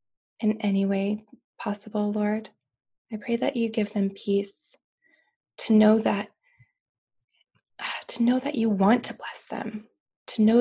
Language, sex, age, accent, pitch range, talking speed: English, female, 20-39, American, 205-240 Hz, 140 wpm